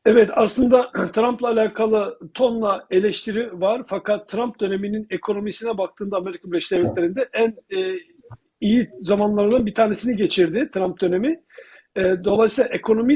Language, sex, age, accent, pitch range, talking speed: Turkish, male, 50-69, native, 190-230 Hz, 115 wpm